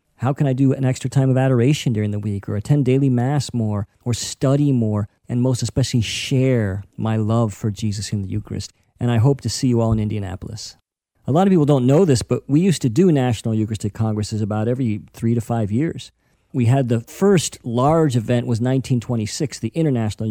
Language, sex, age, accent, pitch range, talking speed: English, male, 40-59, American, 115-140 Hz, 210 wpm